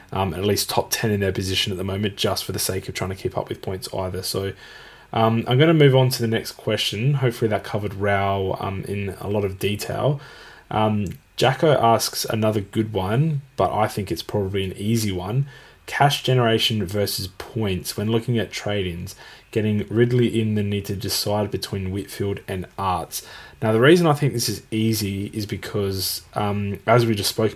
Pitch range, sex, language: 100-115 Hz, male, English